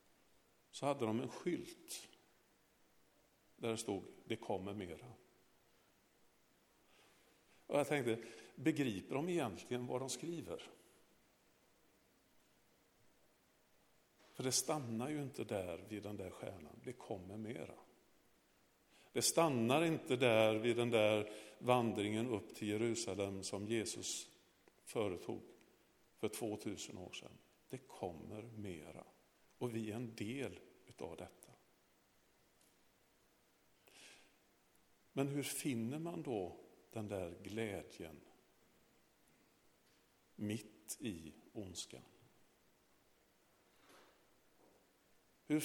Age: 50-69